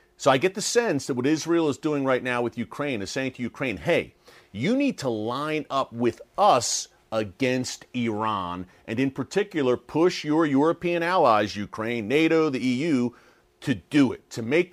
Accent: American